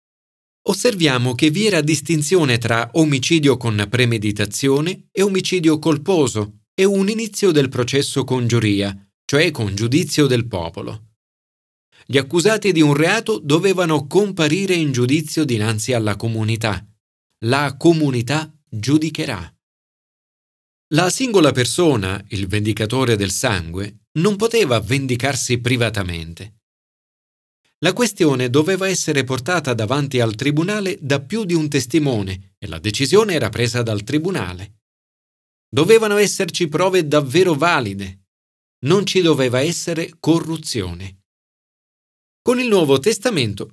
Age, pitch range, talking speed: 40-59, 110-170 Hz, 115 wpm